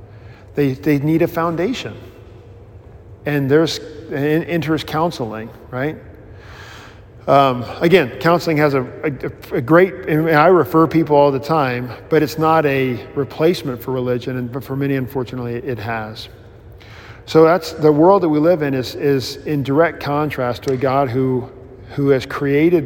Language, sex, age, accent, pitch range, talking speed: English, male, 40-59, American, 115-160 Hz, 155 wpm